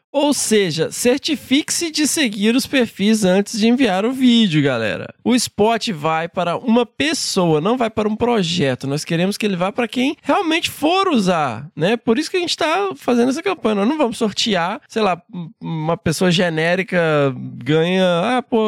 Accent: Brazilian